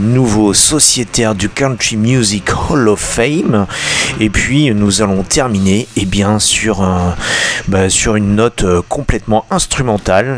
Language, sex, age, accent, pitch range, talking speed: French, male, 40-59, French, 95-115 Hz, 140 wpm